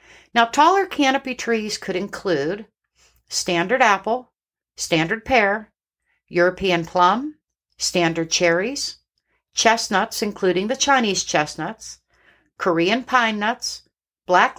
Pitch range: 175-245 Hz